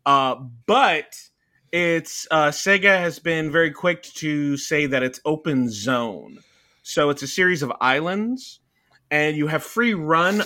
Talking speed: 150 wpm